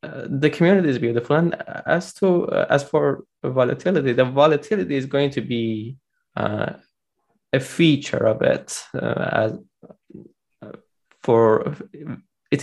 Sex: male